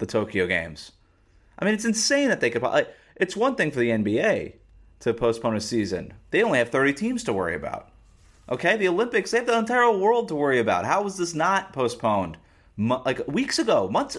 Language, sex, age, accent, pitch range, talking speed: English, male, 30-49, American, 100-155 Hz, 210 wpm